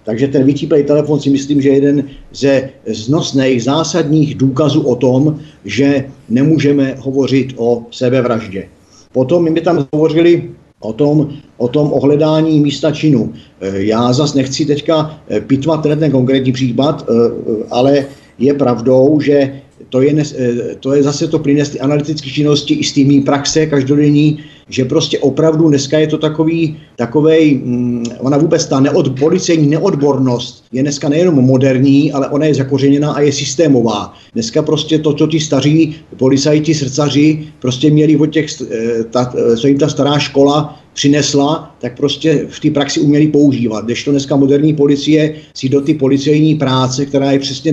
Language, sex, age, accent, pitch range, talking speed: Czech, male, 50-69, native, 135-150 Hz, 155 wpm